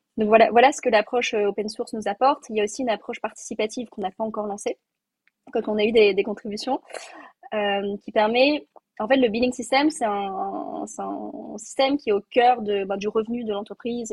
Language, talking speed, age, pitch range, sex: French, 210 wpm, 20-39, 200-240 Hz, female